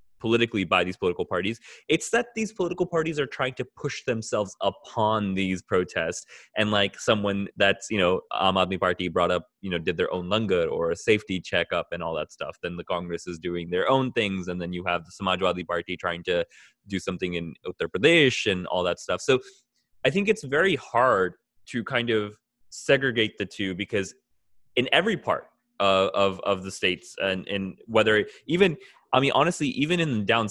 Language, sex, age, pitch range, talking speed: English, male, 20-39, 95-135 Hz, 195 wpm